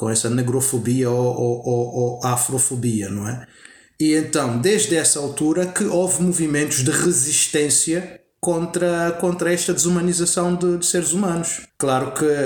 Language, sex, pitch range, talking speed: Portuguese, male, 120-165 Hz, 145 wpm